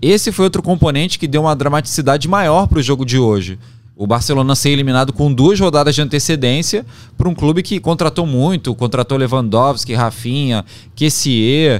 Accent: Brazilian